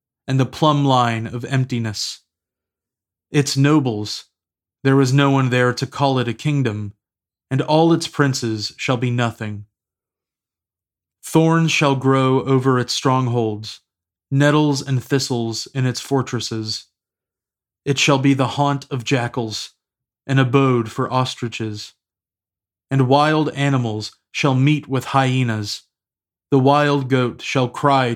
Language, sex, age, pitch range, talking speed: English, male, 30-49, 110-140 Hz, 130 wpm